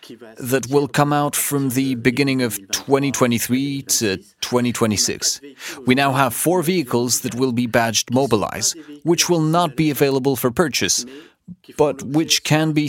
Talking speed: 150 wpm